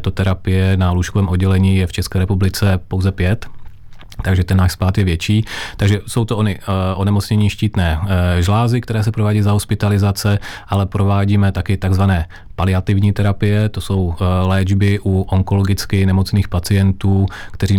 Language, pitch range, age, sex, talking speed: Czech, 95-100 Hz, 30-49, male, 150 wpm